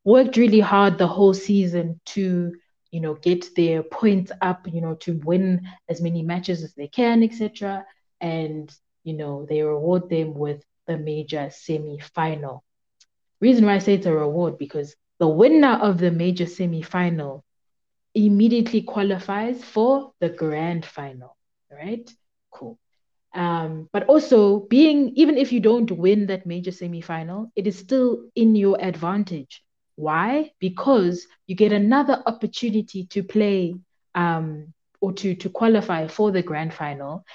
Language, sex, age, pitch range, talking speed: English, female, 20-39, 160-210 Hz, 150 wpm